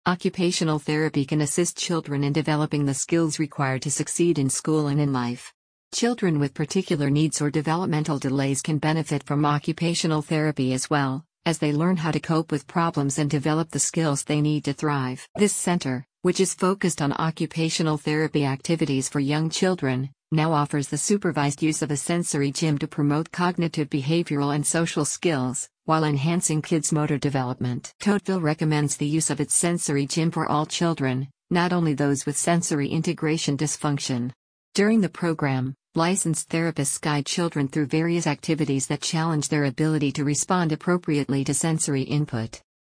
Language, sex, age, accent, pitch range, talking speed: English, female, 50-69, American, 145-165 Hz, 165 wpm